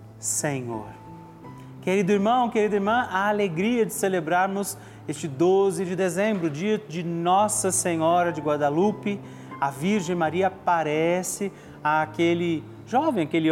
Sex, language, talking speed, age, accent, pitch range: male, Portuguese, 115 wpm, 30-49, Brazilian, 155-185 Hz